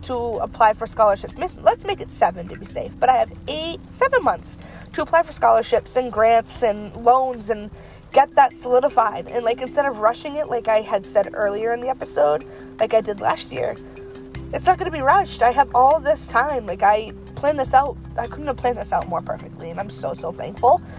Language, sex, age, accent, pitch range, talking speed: English, female, 20-39, American, 195-245 Hz, 220 wpm